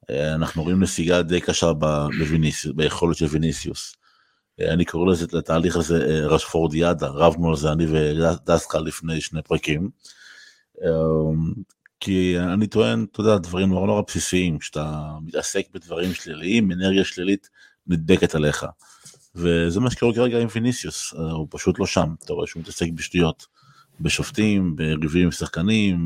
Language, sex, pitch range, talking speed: Hebrew, male, 80-95 Hz, 135 wpm